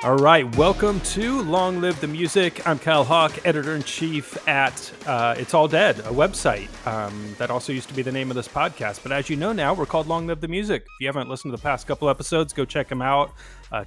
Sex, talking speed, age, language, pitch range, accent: male, 245 wpm, 30-49, English, 115-140 Hz, American